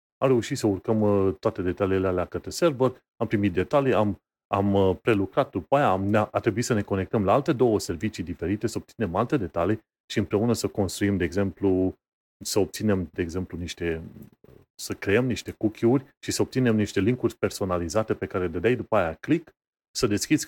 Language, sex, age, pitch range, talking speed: Romanian, male, 30-49, 95-115 Hz, 180 wpm